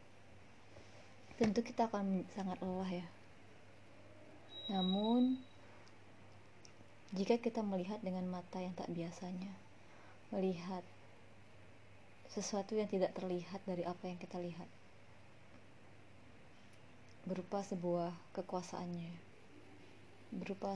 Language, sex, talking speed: Indonesian, female, 85 wpm